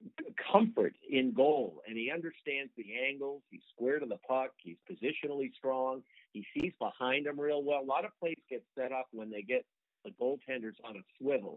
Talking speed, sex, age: 190 wpm, male, 50-69